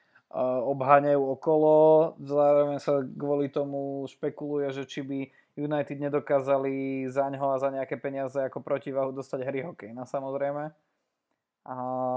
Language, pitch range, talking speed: Slovak, 130-150 Hz, 120 wpm